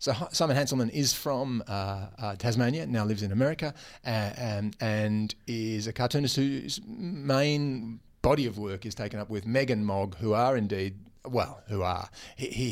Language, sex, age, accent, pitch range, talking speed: English, male, 30-49, Australian, 100-125 Hz, 170 wpm